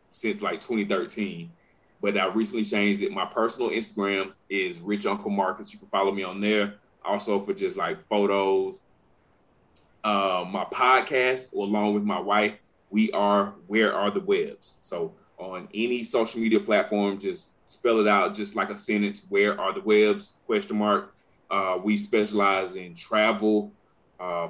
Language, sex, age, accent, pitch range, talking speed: English, male, 20-39, American, 100-110 Hz, 160 wpm